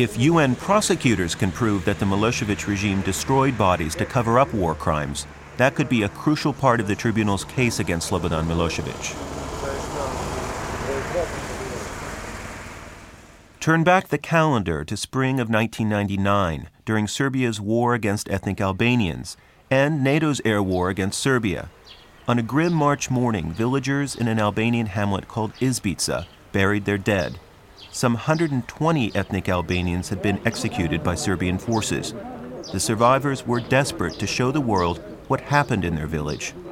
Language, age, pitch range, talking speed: English, 40-59, 95-135 Hz, 140 wpm